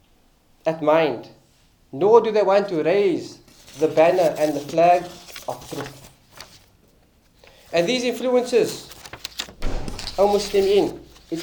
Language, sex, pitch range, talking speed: English, male, 155-210 Hz, 110 wpm